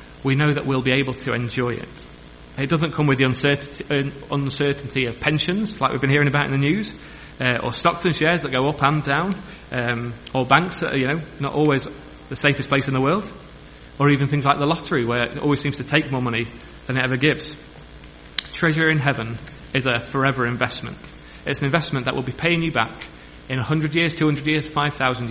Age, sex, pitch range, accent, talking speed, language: 30-49, male, 120-145 Hz, British, 205 wpm, English